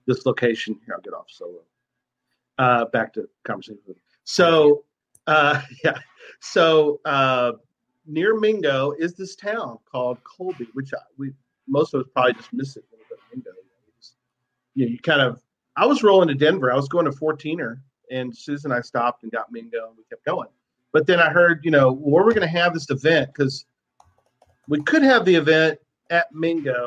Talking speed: 195 wpm